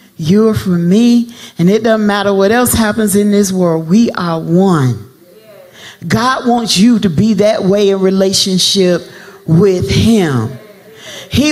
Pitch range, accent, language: 200-260 Hz, American, English